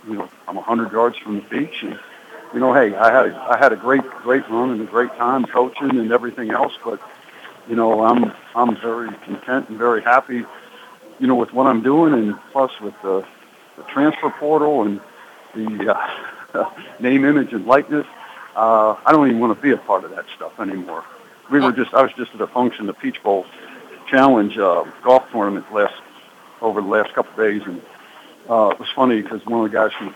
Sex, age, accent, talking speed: male, 60-79, American, 215 wpm